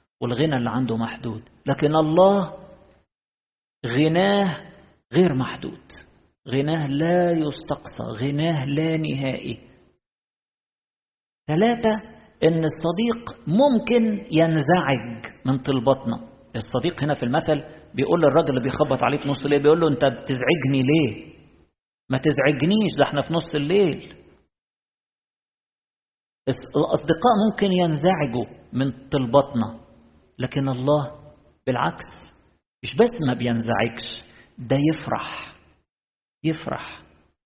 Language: Arabic